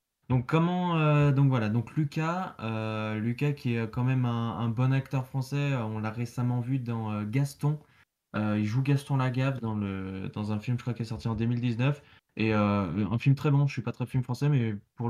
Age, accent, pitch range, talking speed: 20-39, French, 110-135 Hz, 225 wpm